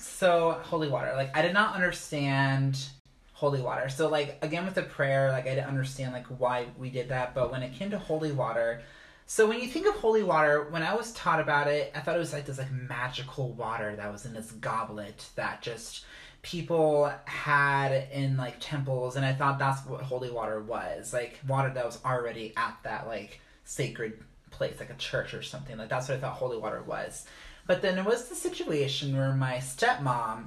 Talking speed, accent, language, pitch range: 210 wpm, American, English, 130-170 Hz